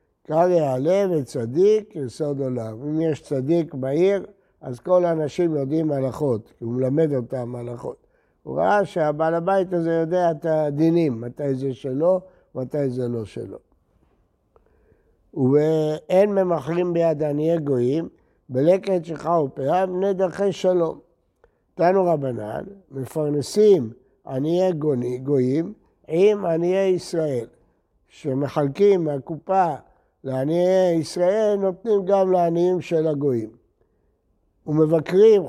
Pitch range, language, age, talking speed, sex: 140-185 Hz, Hebrew, 60-79, 105 wpm, male